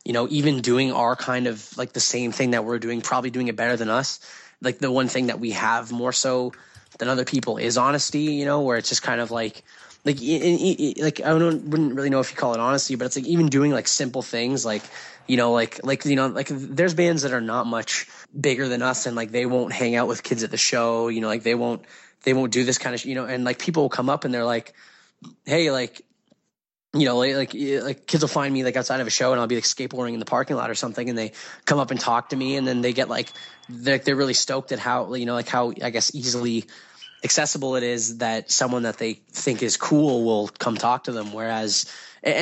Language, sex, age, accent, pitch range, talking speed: English, male, 10-29, American, 120-135 Hz, 265 wpm